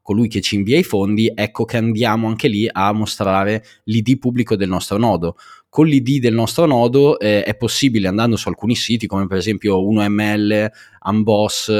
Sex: male